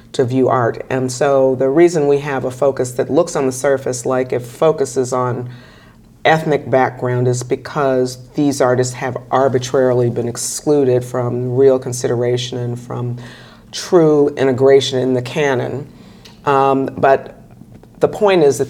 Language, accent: English, American